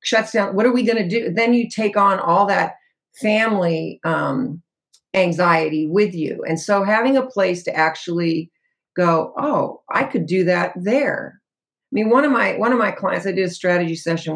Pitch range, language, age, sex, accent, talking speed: 170-225 Hz, English, 50-69, female, American, 195 wpm